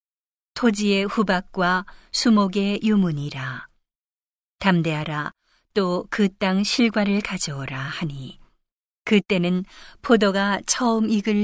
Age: 40-59